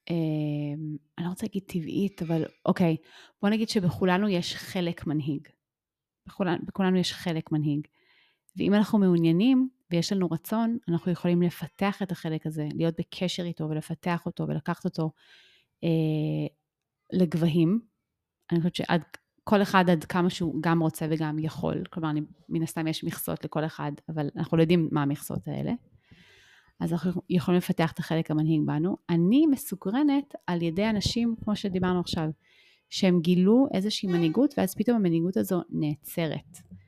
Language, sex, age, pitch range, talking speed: Hebrew, female, 30-49, 155-185 Hz, 150 wpm